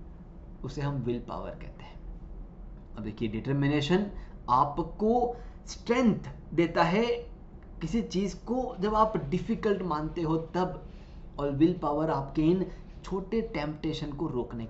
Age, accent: 20-39, native